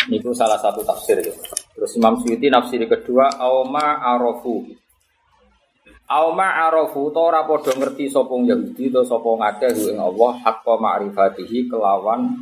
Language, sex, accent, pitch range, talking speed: Indonesian, male, native, 110-145 Hz, 130 wpm